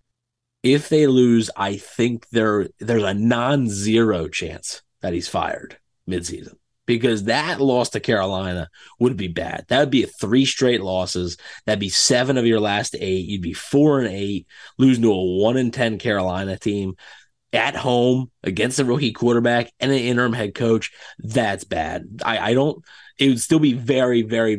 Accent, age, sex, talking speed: American, 30-49, male, 170 wpm